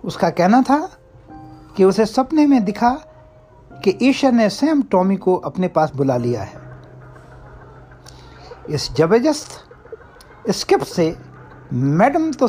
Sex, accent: male, native